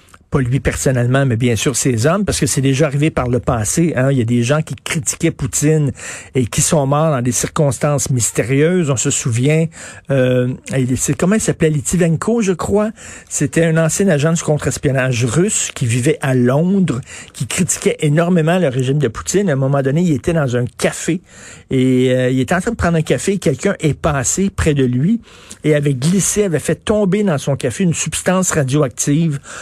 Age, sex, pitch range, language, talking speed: 50-69, male, 130-160 Hz, French, 205 wpm